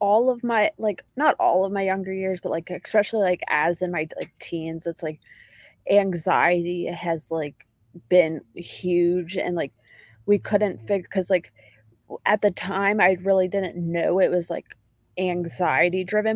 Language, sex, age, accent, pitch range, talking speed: English, female, 20-39, American, 175-195 Hz, 160 wpm